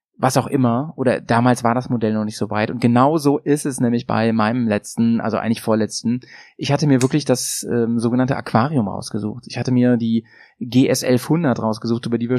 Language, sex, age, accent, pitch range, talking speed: German, male, 30-49, German, 115-135 Hz, 210 wpm